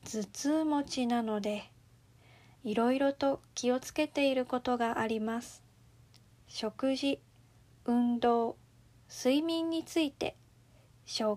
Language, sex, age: Japanese, female, 40-59